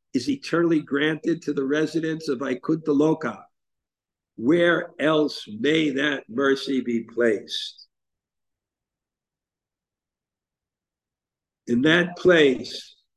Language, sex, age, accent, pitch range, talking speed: English, male, 60-79, American, 145-175 Hz, 80 wpm